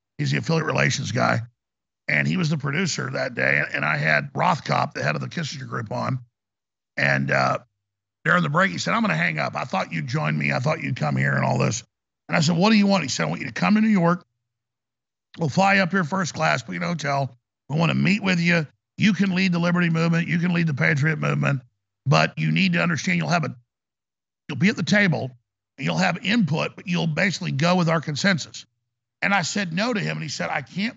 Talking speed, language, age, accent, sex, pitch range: 250 wpm, English, 50-69, American, male, 125-185 Hz